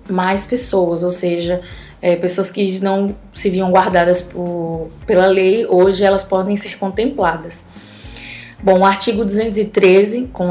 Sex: female